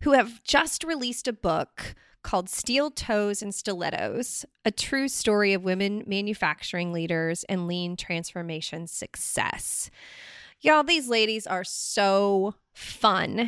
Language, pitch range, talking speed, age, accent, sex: English, 185-255 Hz, 125 wpm, 20-39, American, female